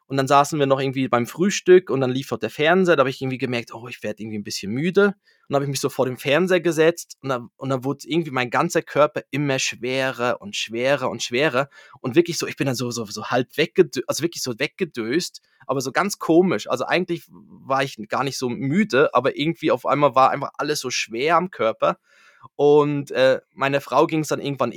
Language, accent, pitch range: German, German, 130-170 Hz